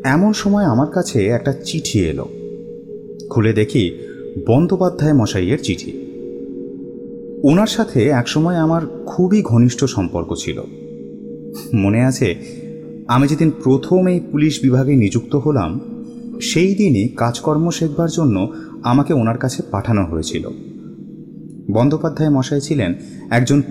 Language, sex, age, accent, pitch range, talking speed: Bengali, male, 30-49, native, 115-160 Hz, 115 wpm